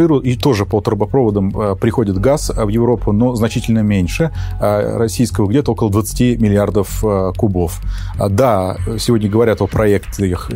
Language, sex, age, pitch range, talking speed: Russian, male, 30-49, 100-120 Hz, 125 wpm